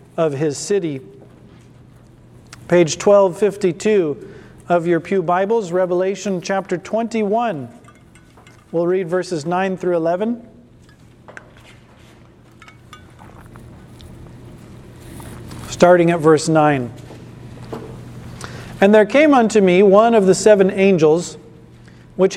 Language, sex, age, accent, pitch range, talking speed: English, male, 40-59, American, 175-245 Hz, 90 wpm